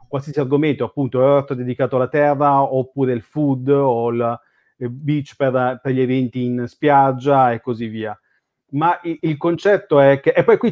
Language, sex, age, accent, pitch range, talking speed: Italian, male, 30-49, native, 130-155 Hz, 180 wpm